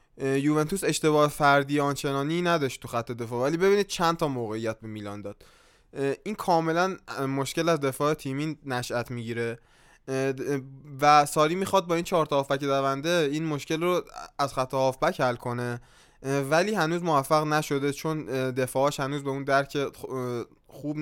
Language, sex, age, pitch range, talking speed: Persian, male, 20-39, 125-155 Hz, 145 wpm